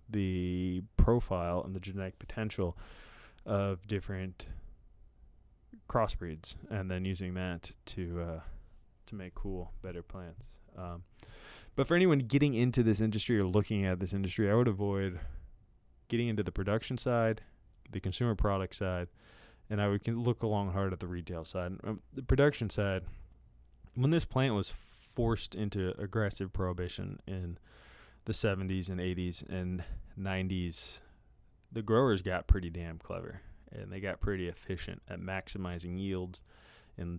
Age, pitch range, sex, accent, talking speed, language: 20-39, 90-105 Hz, male, American, 145 wpm, English